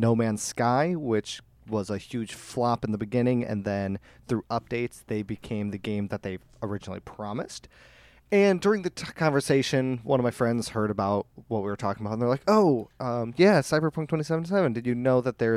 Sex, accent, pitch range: male, American, 105-135 Hz